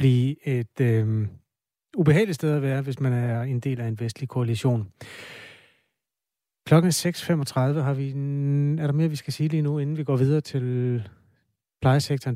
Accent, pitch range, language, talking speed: native, 125-150 Hz, Danish, 165 wpm